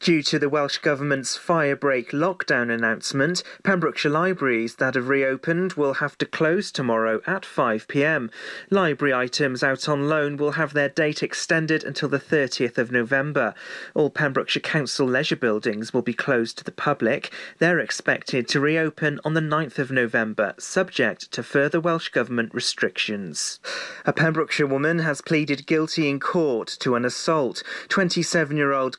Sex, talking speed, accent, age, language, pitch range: male, 150 wpm, British, 30-49, English, 130-160 Hz